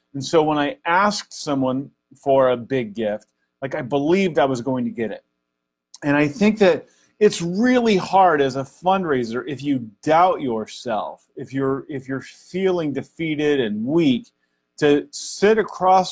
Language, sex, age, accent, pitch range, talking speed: English, male, 30-49, American, 115-170 Hz, 165 wpm